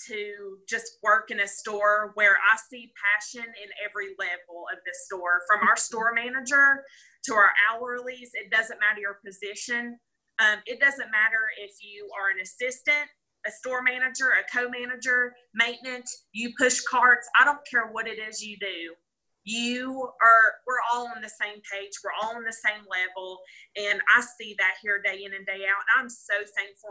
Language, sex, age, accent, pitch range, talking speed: English, female, 20-39, American, 200-240 Hz, 180 wpm